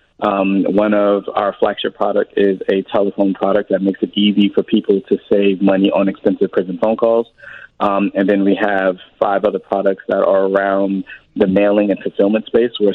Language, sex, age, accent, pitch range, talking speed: English, male, 20-39, American, 95-100 Hz, 195 wpm